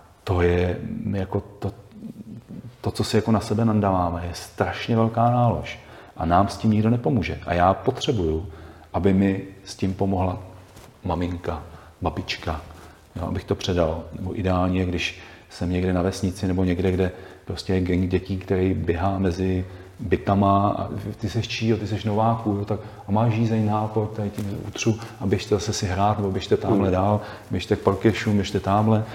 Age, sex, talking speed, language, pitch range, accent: 40-59, male, 170 wpm, Czech, 95-110 Hz, native